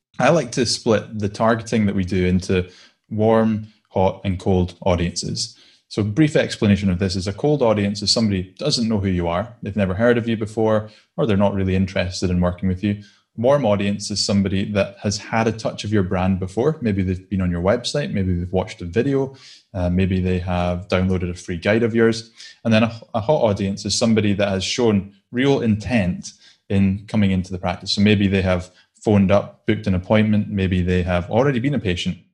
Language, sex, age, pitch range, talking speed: English, male, 20-39, 95-115 Hz, 215 wpm